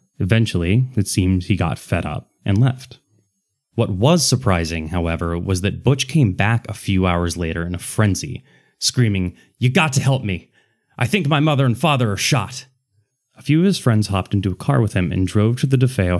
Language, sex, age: English, male, 30-49